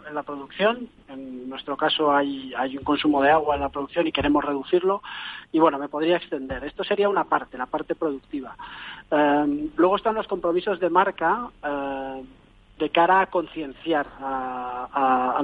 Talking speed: 175 wpm